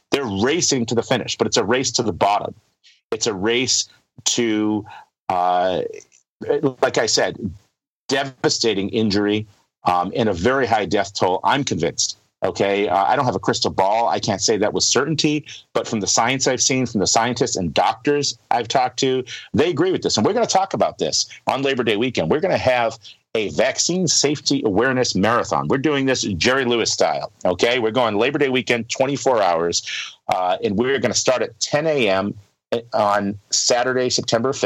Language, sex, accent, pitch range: English, male, American, 105-135 Hz